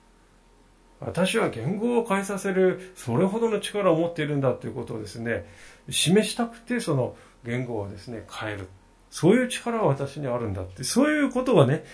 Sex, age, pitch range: male, 40-59, 125-195 Hz